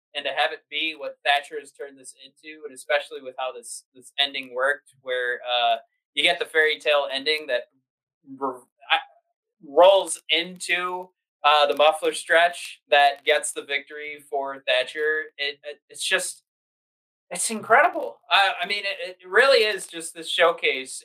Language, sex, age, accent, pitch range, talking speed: English, male, 20-39, American, 140-195 Hz, 160 wpm